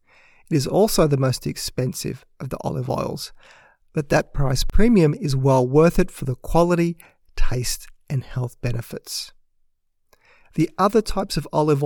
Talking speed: 150 wpm